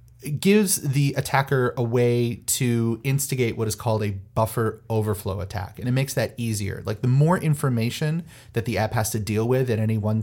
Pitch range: 105-125 Hz